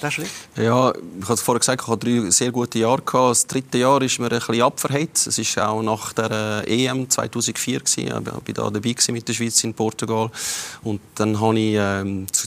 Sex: male